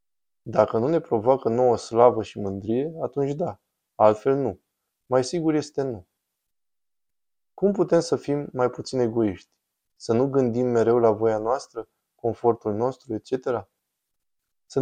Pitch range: 110-135 Hz